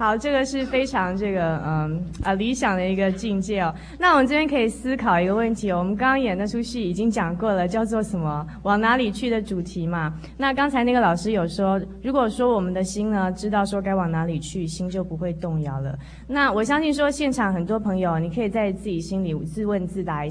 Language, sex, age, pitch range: Chinese, female, 20-39, 175-235 Hz